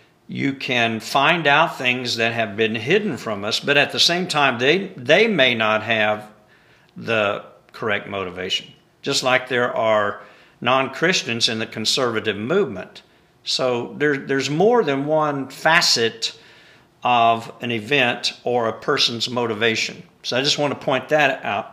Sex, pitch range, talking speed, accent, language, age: male, 115-140 Hz, 150 wpm, American, English, 50-69